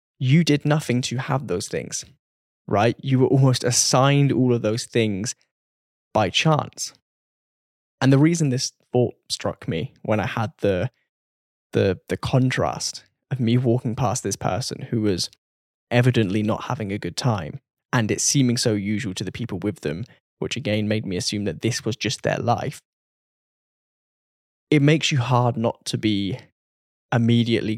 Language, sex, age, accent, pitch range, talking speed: English, male, 10-29, British, 105-130 Hz, 160 wpm